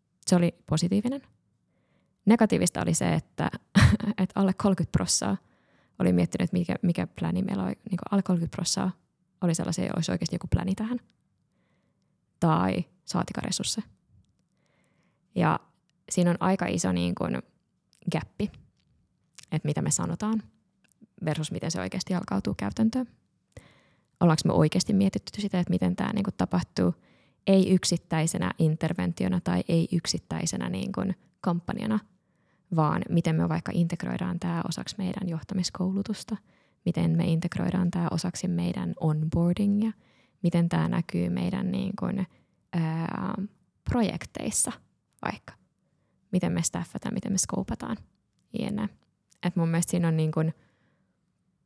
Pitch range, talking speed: 160-195 Hz, 110 wpm